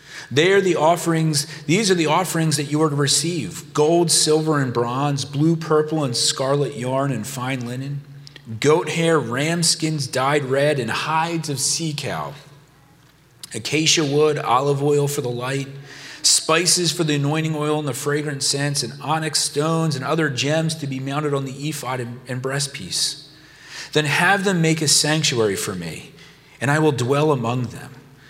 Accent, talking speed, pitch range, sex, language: American, 170 wpm, 135-160 Hz, male, English